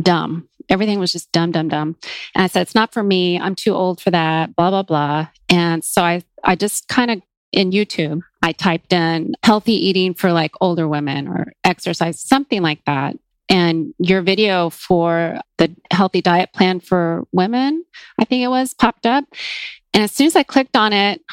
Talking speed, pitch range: 195 wpm, 175-225 Hz